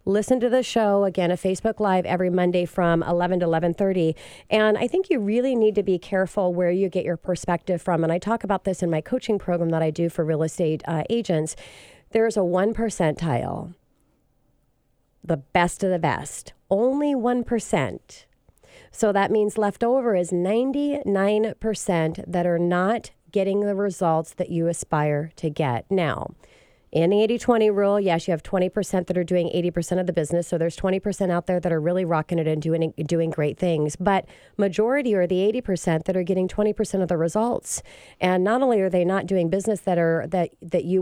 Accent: American